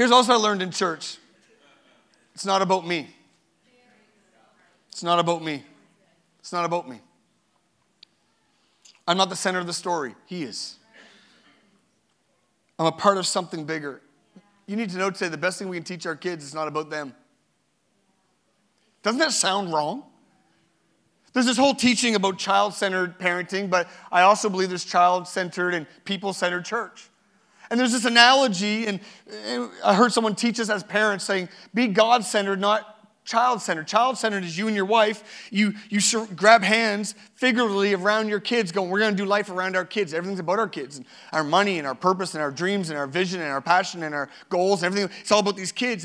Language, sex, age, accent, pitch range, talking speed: English, male, 30-49, American, 180-220 Hz, 180 wpm